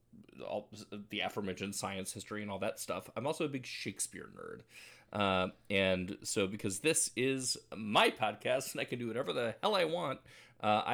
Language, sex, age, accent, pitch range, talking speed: English, male, 30-49, American, 105-140 Hz, 180 wpm